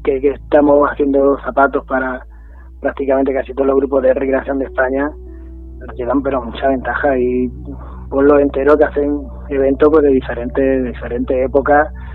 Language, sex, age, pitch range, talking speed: Spanish, male, 20-39, 120-140 Hz, 165 wpm